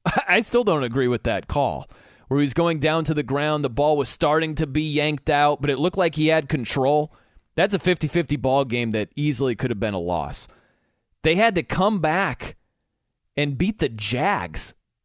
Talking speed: 200 wpm